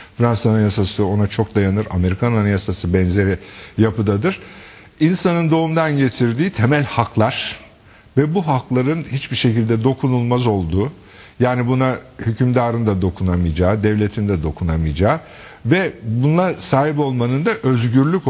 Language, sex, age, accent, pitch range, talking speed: Turkish, male, 50-69, native, 105-140 Hz, 115 wpm